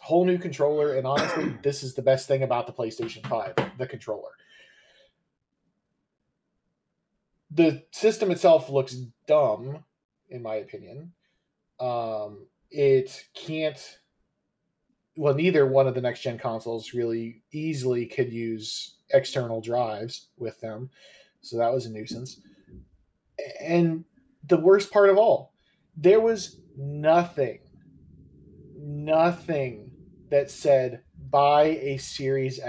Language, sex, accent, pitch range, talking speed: English, male, American, 125-175 Hz, 115 wpm